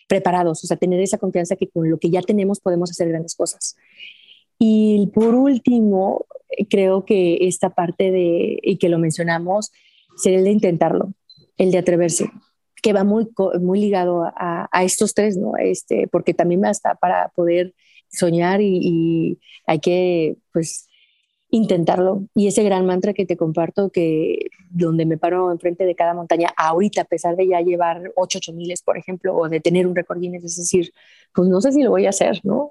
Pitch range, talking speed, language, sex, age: 170-200 Hz, 180 wpm, Spanish, female, 30-49